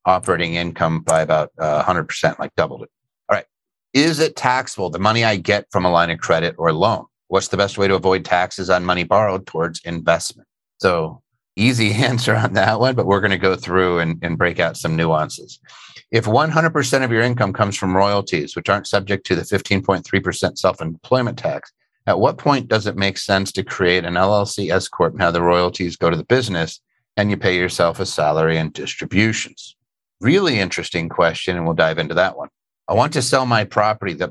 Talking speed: 205 wpm